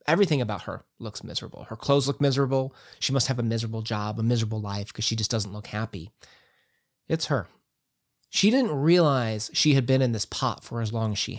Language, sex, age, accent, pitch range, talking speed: English, male, 30-49, American, 120-160 Hz, 210 wpm